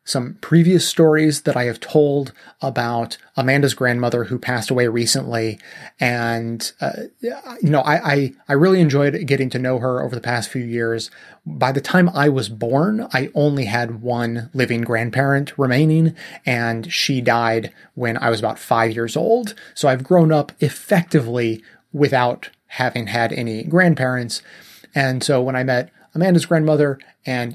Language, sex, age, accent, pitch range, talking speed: English, male, 30-49, American, 120-150 Hz, 160 wpm